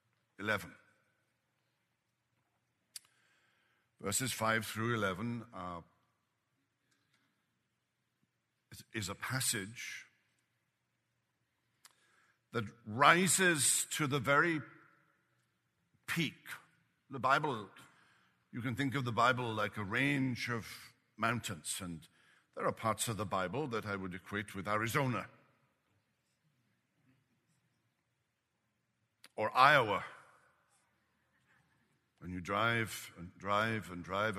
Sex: male